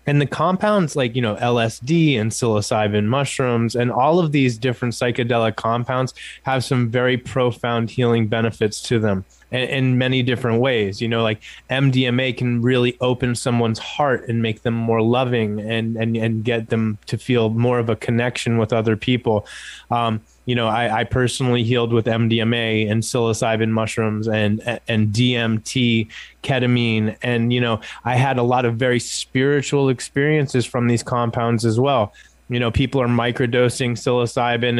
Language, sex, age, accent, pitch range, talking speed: English, male, 20-39, American, 115-130 Hz, 165 wpm